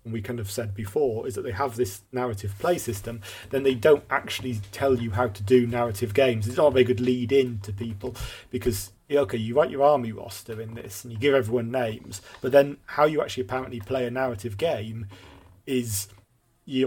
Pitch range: 115-130 Hz